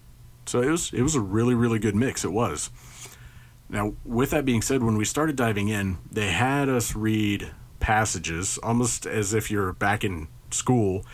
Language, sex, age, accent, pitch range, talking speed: English, male, 30-49, American, 105-125 Hz, 185 wpm